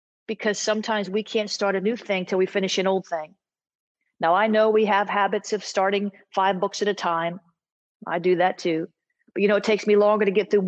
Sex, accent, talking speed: female, American, 230 wpm